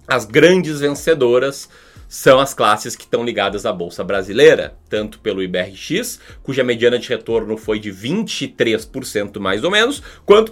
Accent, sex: Brazilian, male